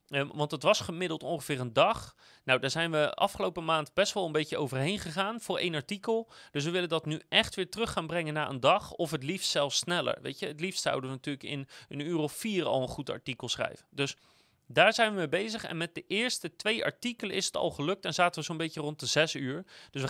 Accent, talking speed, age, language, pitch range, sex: Dutch, 250 wpm, 30-49, Dutch, 145-195 Hz, male